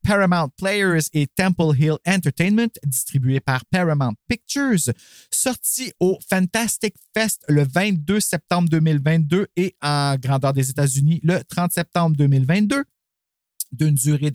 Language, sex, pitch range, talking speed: French, male, 140-195 Hz, 120 wpm